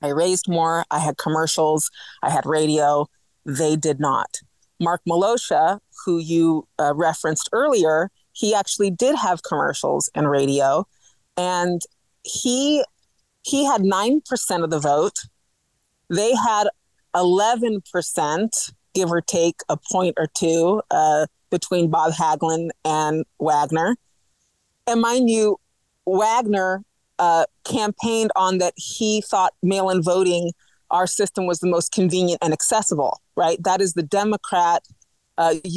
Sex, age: female, 30-49